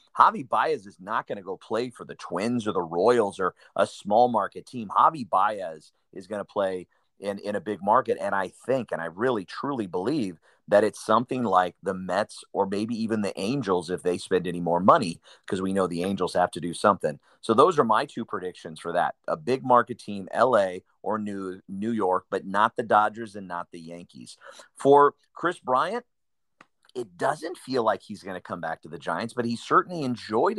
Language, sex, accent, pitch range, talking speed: English, male, American, 95-115 Hz, 210 wpm